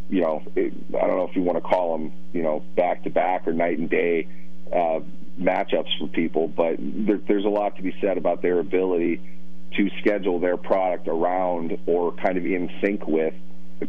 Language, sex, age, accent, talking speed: English, male, 40-59, American, 200 wpm